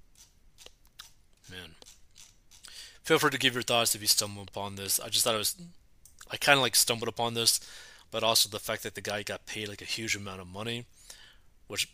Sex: male